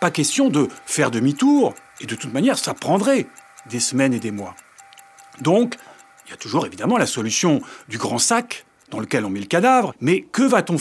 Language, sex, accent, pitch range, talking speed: French, male, French, 130-180 Hz, 200 wpm